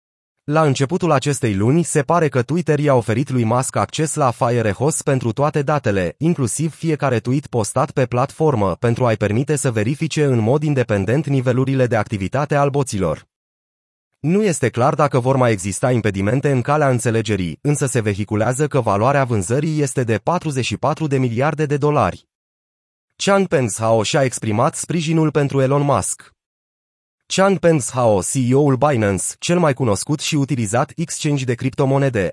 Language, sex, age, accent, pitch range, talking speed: Romanian, male, 30-49, native, 120-150 Hz, 150 wpm